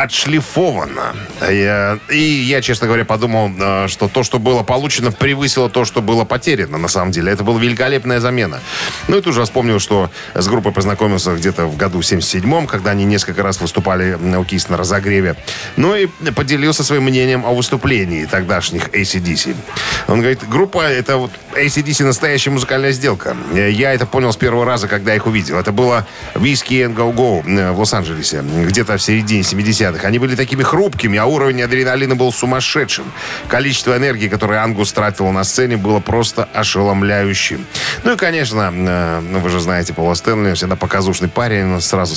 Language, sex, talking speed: Russian, male, 165 wpm